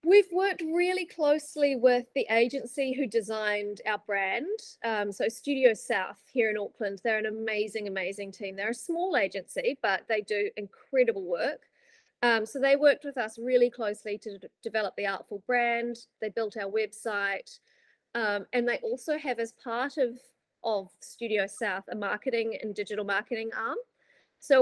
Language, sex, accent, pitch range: English, female, Australian, 210-275 Hz